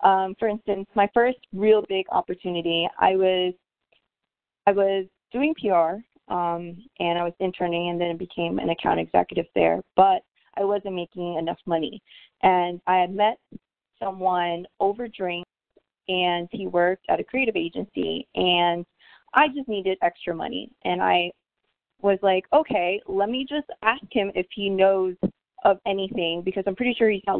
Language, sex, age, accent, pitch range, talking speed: English, female, 20-39, American, 175-210 Hz, 160 wpm